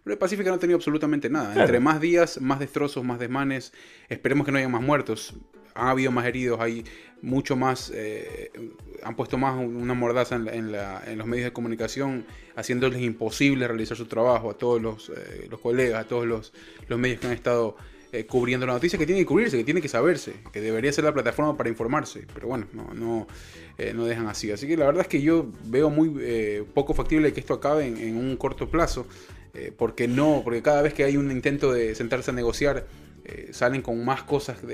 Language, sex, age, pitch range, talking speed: Spanish, male, 20-39, 115-145 Hz, 220 wpm